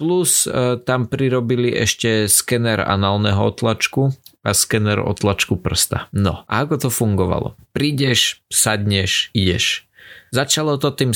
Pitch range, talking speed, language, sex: 100-120 Hz, 125 wpm, Slovak, male